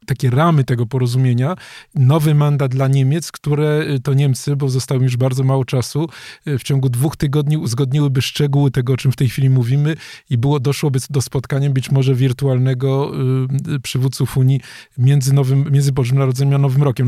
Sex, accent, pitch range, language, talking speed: male, native, 130-145 Hz, Polish, 170 wpm